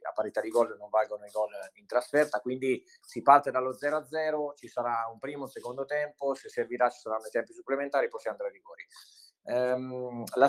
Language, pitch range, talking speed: Italian, 115-145 Hz, 215 wpm